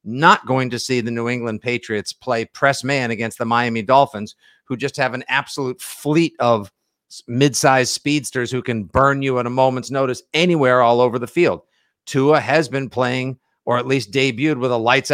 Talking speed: 190 wpm